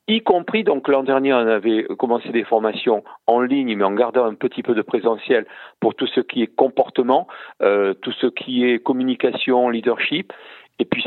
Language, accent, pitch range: French, French, 115-150 Hz